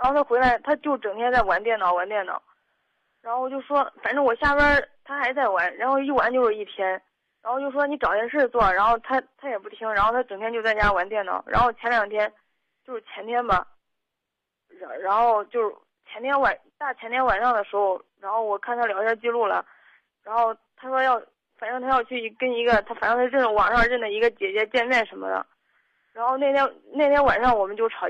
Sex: female